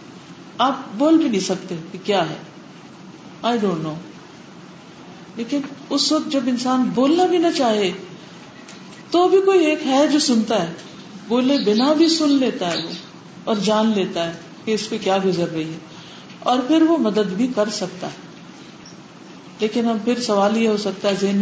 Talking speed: 175 wpm